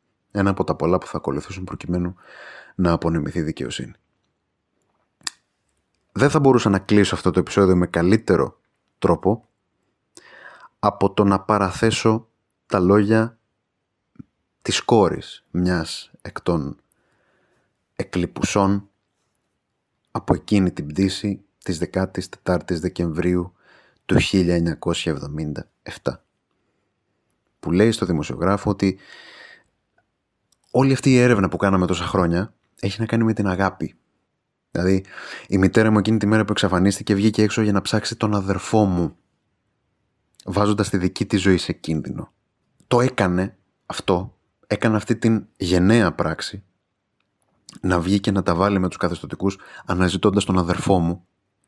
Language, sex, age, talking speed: Greek, male, 30-49, 125 wpm